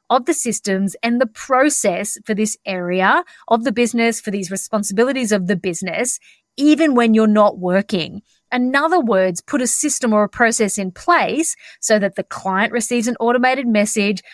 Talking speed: 175 wpm